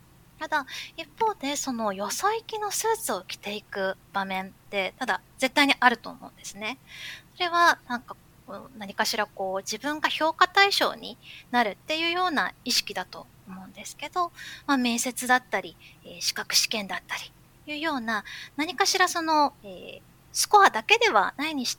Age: 20-39